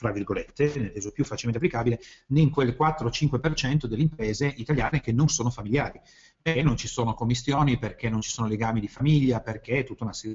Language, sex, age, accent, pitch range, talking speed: Italian, male, 40-59, native, 115-155 Hz, 195 wpm